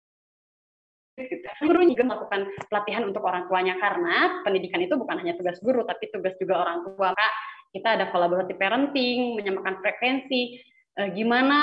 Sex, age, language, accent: female, 20-39, Indonesian, native